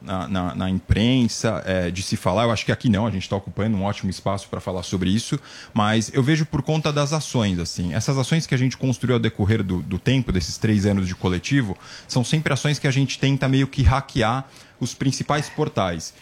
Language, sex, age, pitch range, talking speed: Portuguese, male, 20-39, 105-140 Hz, 220 wpm